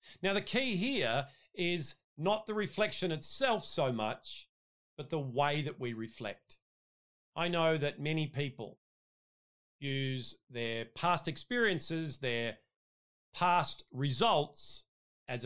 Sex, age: male, 40-59